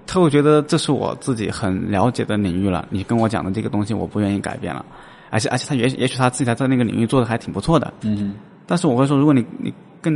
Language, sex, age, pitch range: Chinese, male, 20-39, 105-140 Hz